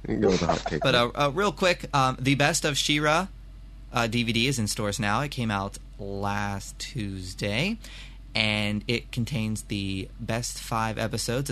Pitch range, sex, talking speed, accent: 105-130 Hz, male, 140 wpm, American